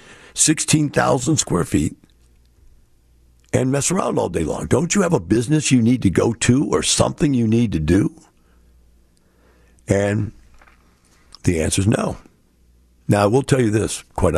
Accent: American